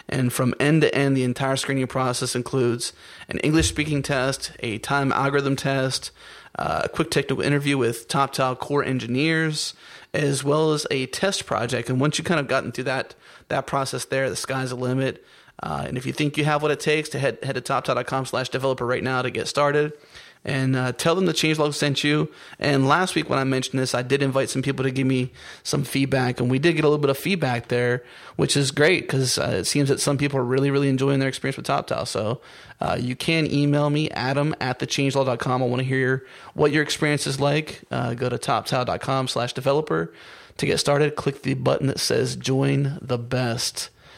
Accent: American